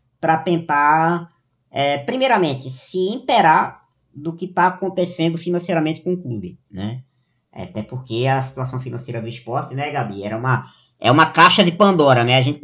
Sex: male